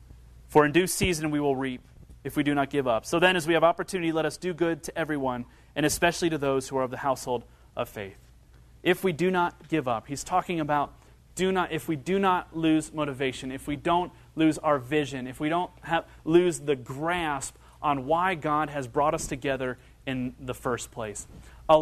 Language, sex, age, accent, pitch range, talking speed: English, male, 30-49, American, 140-180 Hz, 215 wpm